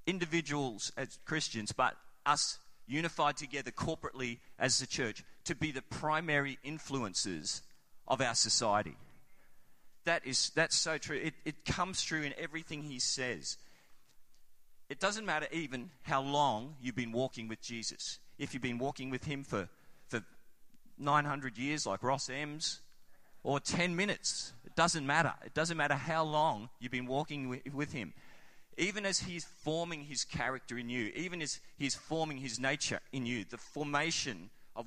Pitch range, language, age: 130-160 Hz, English, 30-49